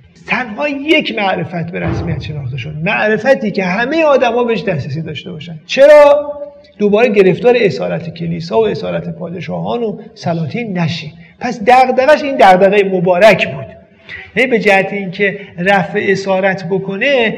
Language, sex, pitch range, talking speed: Persian, male, 165-230 Hz, 130 wpm